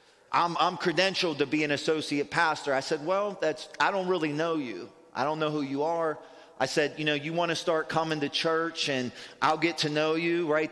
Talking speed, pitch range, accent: 230 wpm, 115-160 Hz, American